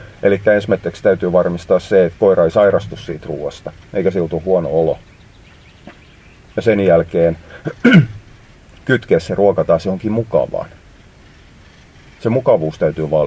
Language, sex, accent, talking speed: Finnish, male, native, 125 wpm